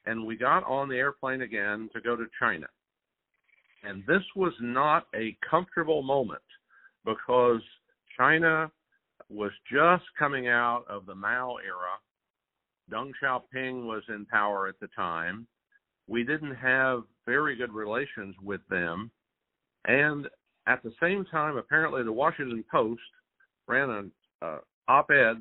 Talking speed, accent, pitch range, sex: 135 wpm, American, 110-145 Hz, male